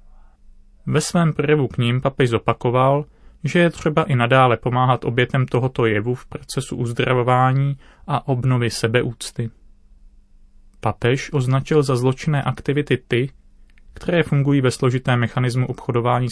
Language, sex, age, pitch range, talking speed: Czech, male, 20-39, 120-140 Hz, 125 wpm